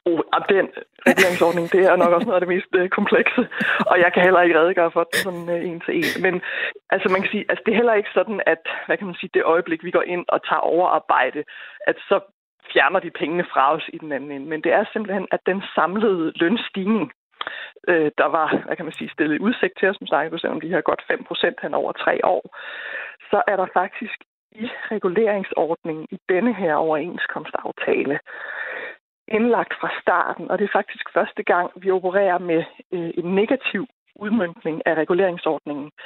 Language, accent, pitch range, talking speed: Danish, native, 165-200 Hz, 195 wpm